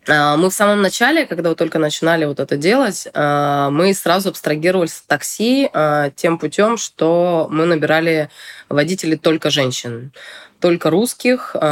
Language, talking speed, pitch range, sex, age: Russian, 130 wpm, 150-185 Hz, female, 20-39